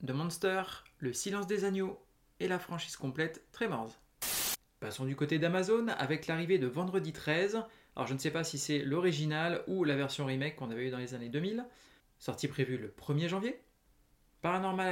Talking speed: 180 wpm